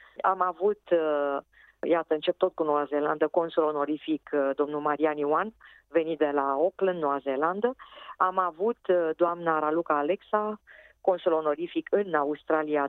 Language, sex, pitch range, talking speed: Romanian, female, 155-190 Hz, 130 wpm